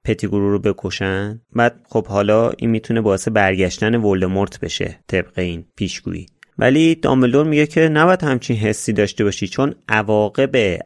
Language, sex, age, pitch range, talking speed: Persian, male, 30-49, 100-145 Hz, 145 wpm